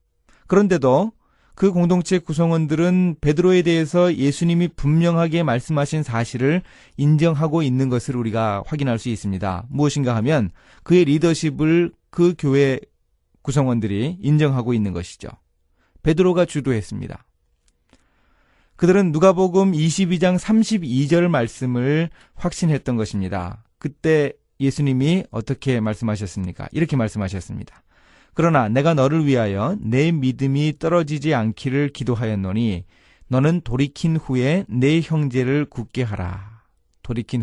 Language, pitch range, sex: Korean, 115-170 Hz, male